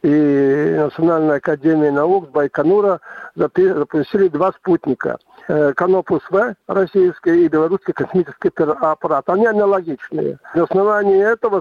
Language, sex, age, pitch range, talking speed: Russian, male, 60-79, 165-220 Hz, 100 wpm